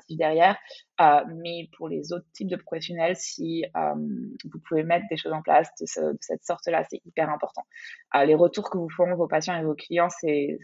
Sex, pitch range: female, 160-195 Hz